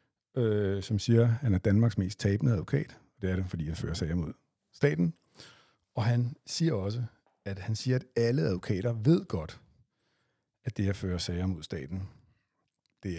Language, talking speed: Danish, 175 wpm